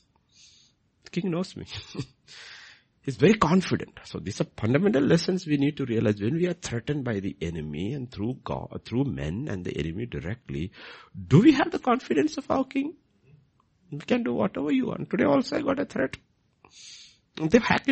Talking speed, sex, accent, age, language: 180 wpm, male, Indian, 60-79, English